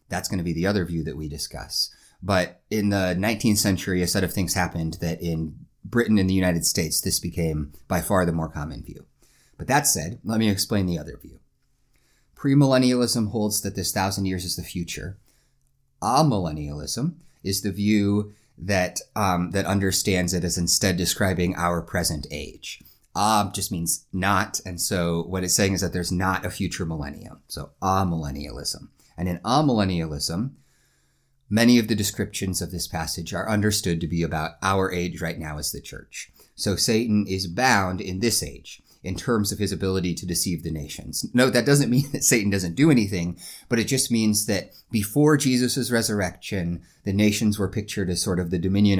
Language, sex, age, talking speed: English, male, 30-49, 185 wpm